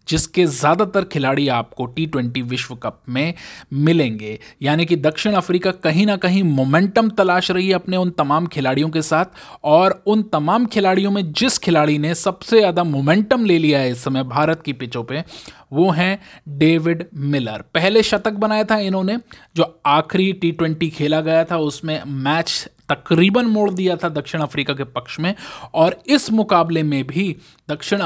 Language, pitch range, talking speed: Hindi, 145-190 Hz, 165 wpm